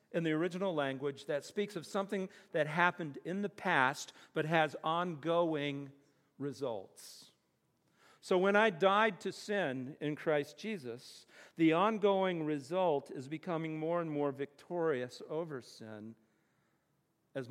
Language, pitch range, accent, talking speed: English, 130-175 Hz, American, 130 wpm